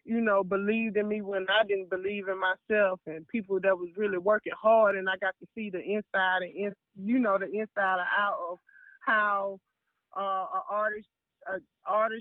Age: 20-39